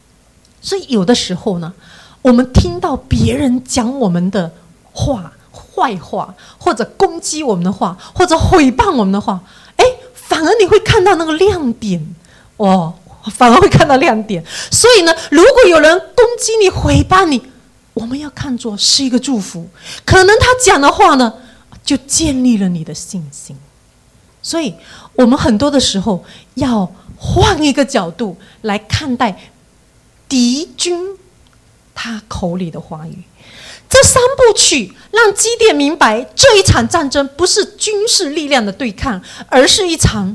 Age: 30-49